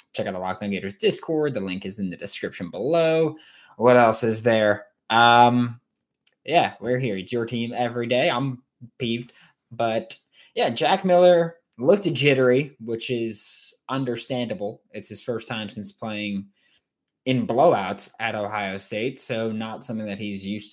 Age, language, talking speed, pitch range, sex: 20-39, English, 155 wpm, 105-145 Hz, male